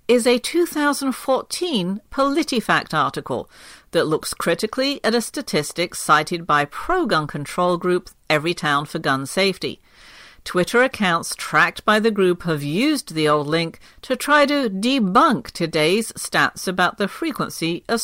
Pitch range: 160-240 Hz